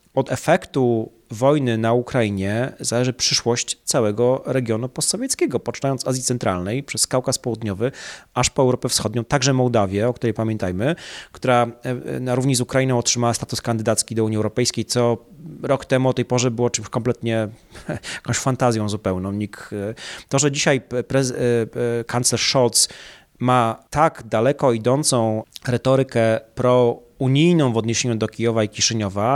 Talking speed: 135 wpm